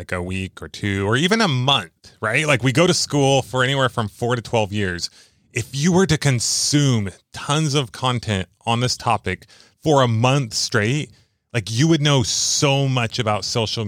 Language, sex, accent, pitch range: English, male, American, 105-135 Hz